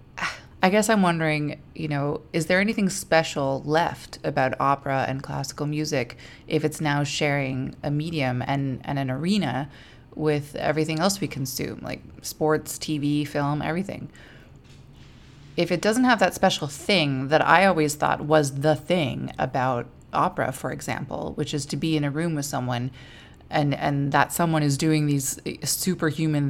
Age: 20-39